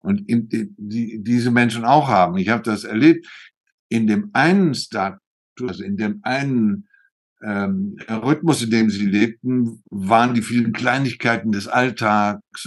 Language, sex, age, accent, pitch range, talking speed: German, male, 60-79, German, 105-140 Hz, 145 wpm